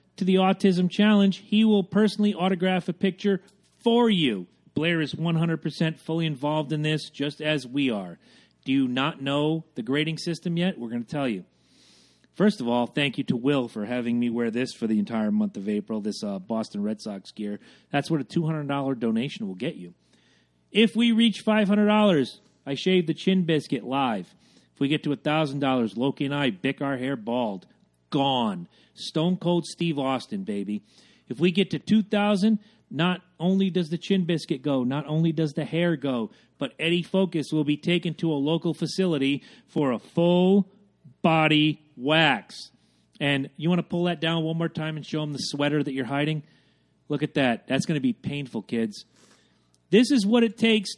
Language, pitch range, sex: English, 140-195 Hz, male